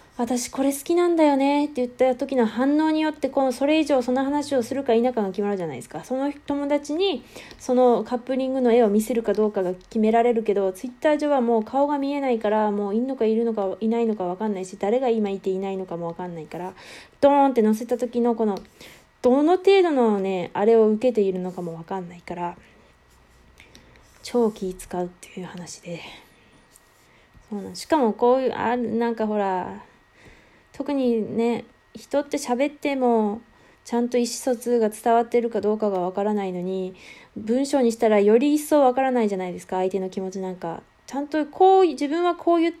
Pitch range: 195-265 Hz